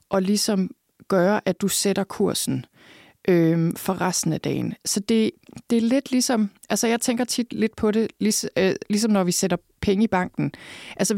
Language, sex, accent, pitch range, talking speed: Danish, female, native, 170-210 Hz, 170 wpm